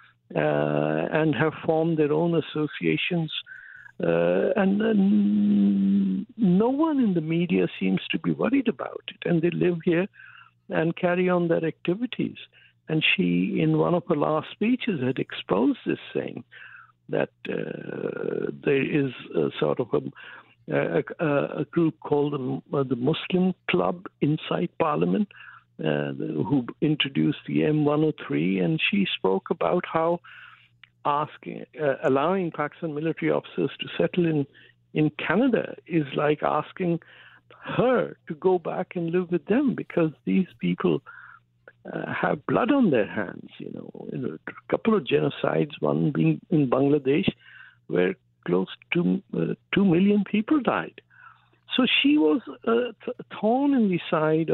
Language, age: English, 60-79